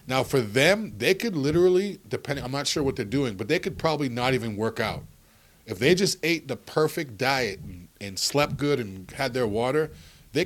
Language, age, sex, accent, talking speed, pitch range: English, 40-59, male, American, 210 wpm, 115-150 Hz